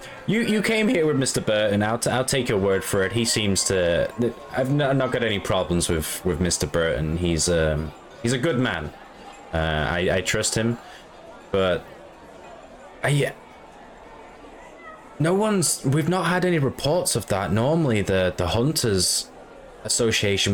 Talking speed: 160 wpm